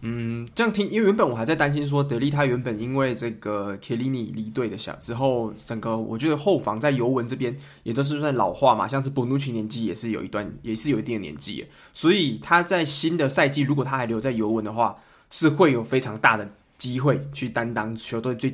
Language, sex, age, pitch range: Chinese, male, 20-39, 120-155 Hz